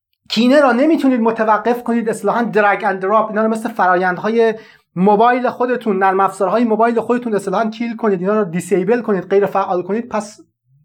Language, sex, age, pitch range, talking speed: Persian, male, 30-49, 170-225 Hz, 175 wpm